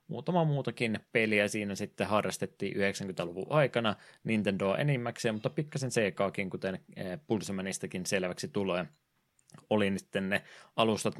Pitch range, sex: 95-115 Hz, male